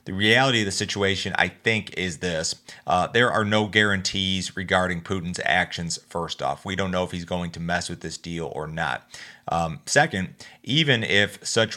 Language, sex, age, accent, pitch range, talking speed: English, male, 30-49, American, 85-100 Hz, 190 wpm